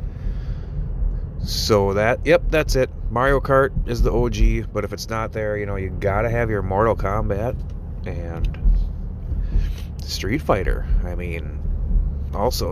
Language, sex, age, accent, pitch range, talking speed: English, male, 30-49, American, 85-130 Hz, 135 wpm